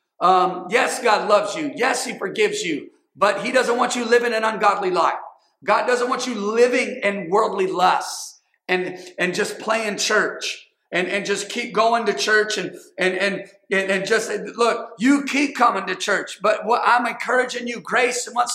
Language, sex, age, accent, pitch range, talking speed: English, male, 40-59, American, 200-255 Hz, 185 wpm